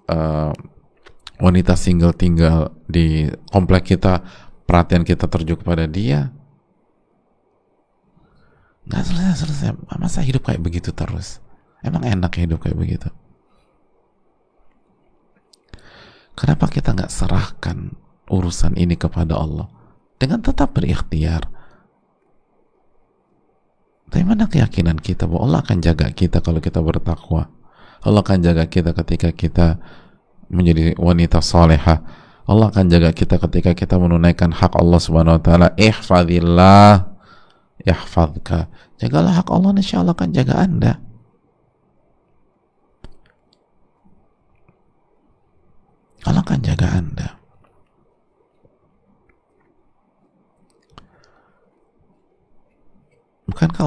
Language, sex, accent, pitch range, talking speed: Indonesian, male, native, 80-95 Hz, 90 wpm